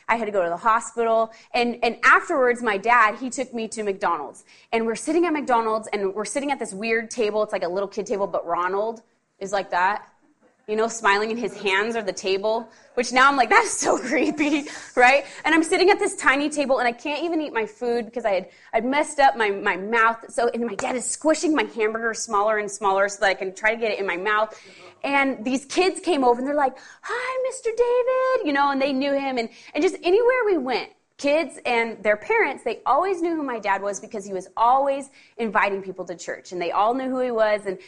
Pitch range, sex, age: 210-285 Hz, female, 20-39